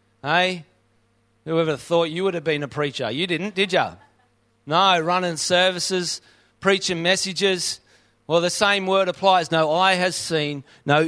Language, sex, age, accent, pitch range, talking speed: English, male, 40-59, Australian, 145-185 Hz, 150 wpm